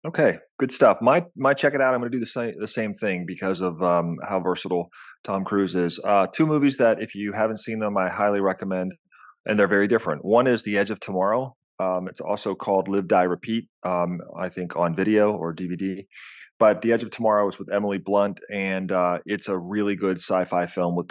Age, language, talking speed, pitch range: 30-49, English, 220 wpm, 90-110 Hz